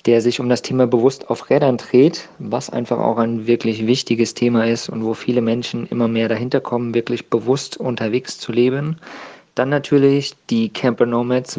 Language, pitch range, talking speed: German, 115-130 Hz, 180 wpm